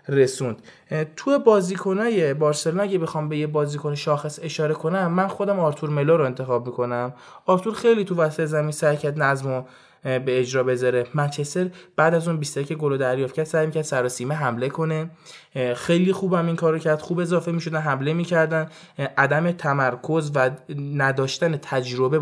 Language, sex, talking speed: Persian, male, 155 wpm